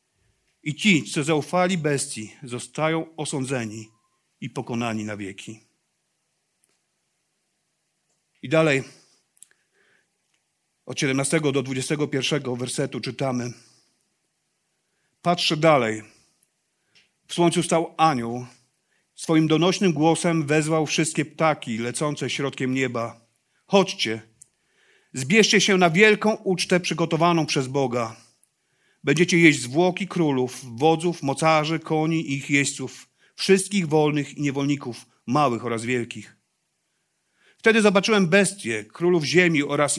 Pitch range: 130-170 Hz